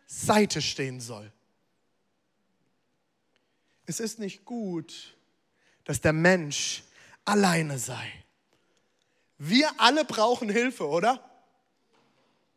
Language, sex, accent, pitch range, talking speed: German, male, German, 220-335 Hz, 80 wpm